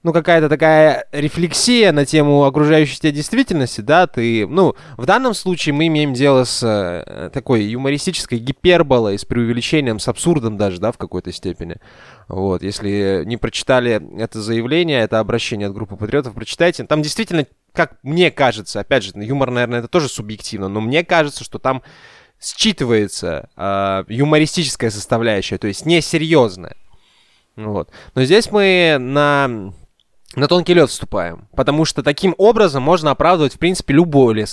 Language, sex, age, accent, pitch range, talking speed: Russian, male, 20-39, native, 110-155 Hz, 150 wpm